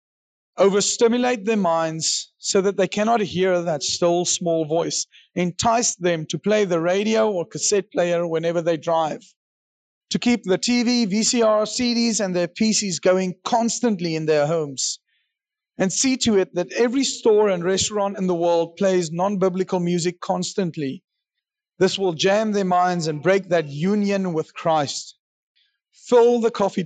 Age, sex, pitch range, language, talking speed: 30-49, male, 165-215 Hz, English, 150 wpm